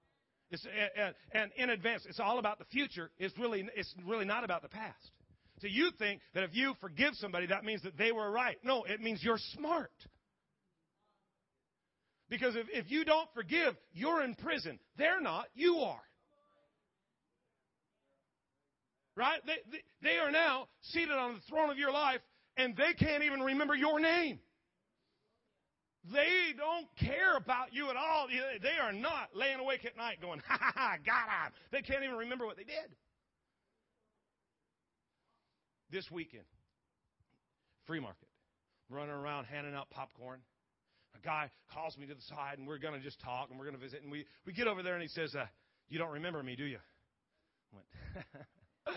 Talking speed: 175 wpm